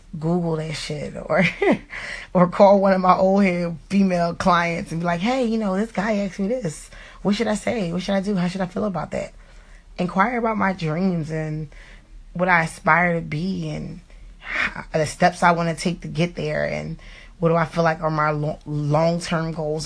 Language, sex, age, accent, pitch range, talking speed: English, female, 20-39, American, 155-180 Hz, 210 wpm